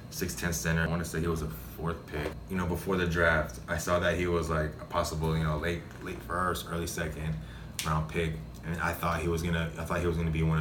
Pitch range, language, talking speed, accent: 80-85 Hz, English, 260 wpm, American